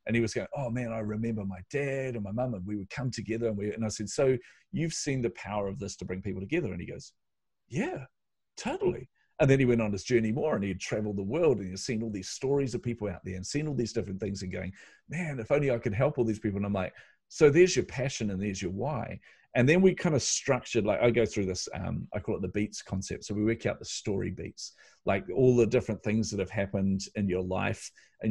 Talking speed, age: 270 wpm, 40-59